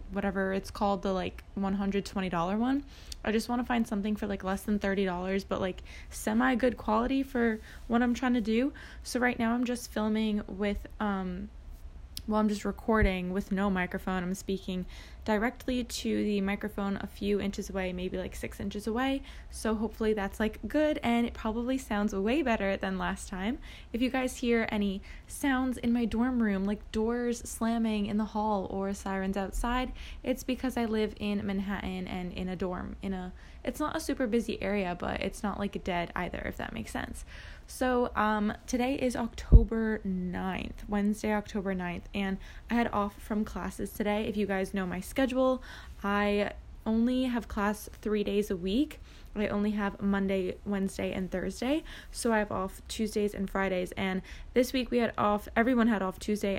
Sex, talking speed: female, 185 wpm